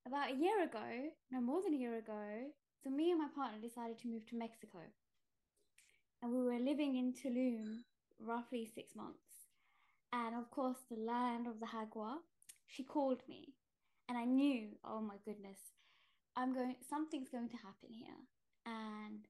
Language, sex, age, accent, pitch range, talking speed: English, female, 10-29, British, 225-275 Hz, 170 wpm